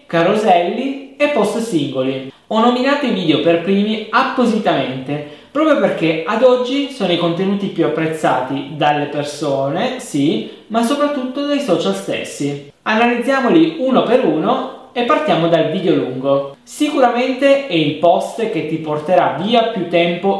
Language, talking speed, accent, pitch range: Italian, 140 wpm, native, 145-230 Hz